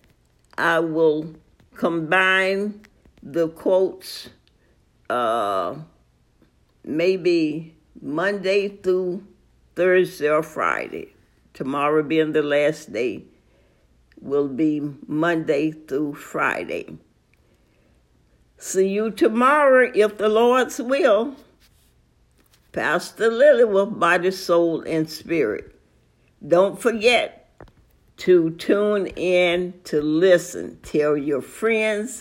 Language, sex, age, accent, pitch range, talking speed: English, female, 60-79, American, 150-200 Hz, 85 wpm